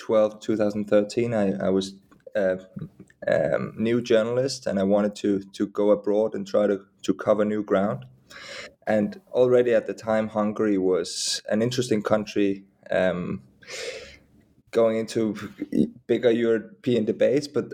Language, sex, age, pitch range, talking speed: English, male, 20-39, 105-110 Hz, 140 wpm